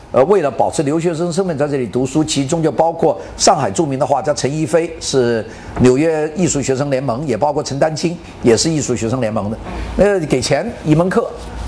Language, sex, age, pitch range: Chinese, male, 50-69, 120-175 Hz